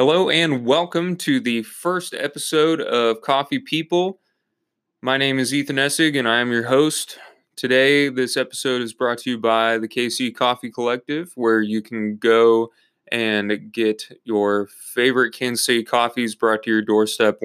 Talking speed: 160 wpm